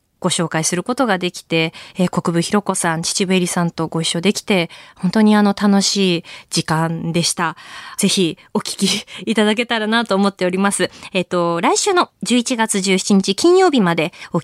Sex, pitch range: female, 175-255 Hz